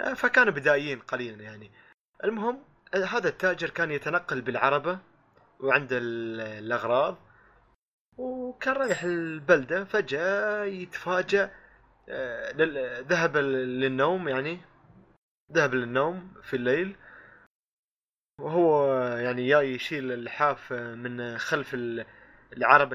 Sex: male